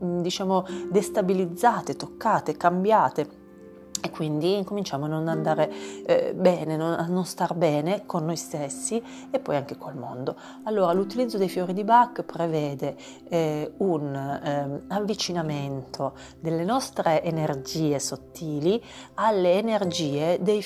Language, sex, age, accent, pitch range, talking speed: Italian, female, 40-59, native, 150-200 Hz, 120 wpm